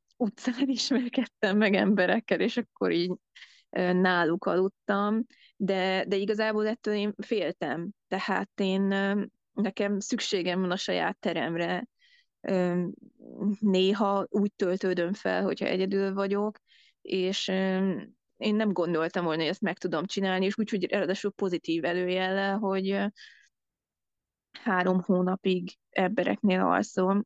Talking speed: 110 wpm